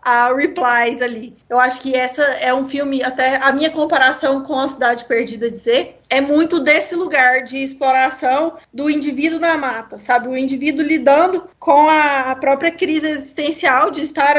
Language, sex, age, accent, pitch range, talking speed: Portuguese, female, 20-39, Brazilian, 260-305 Hz, 165 wpm